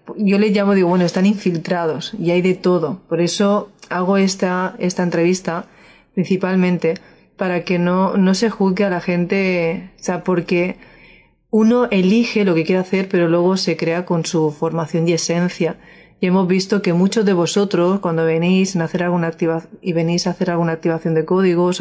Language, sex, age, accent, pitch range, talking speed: Spanish, female, 30-49, Spanish, 175-205 Hz, 180 wpm